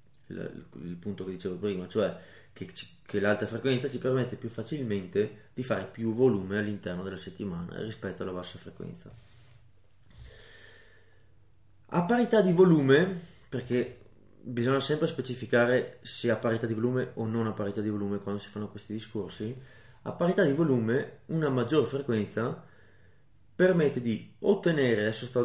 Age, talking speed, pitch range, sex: 30-49, 145 wpm, 105-130 Hz, male